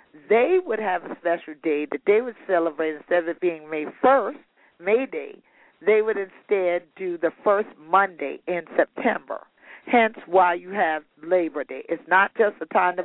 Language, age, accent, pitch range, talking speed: English, 50-69, American, 165-220 Hz, 180 wpm